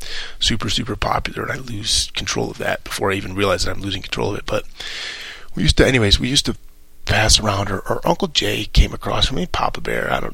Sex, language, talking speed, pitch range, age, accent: male, English, 230 wpm, 80-115 Hz, 30-49, American